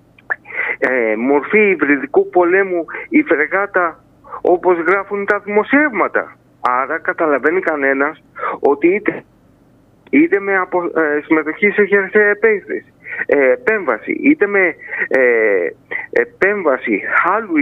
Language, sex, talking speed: Greek, male, 105 wpm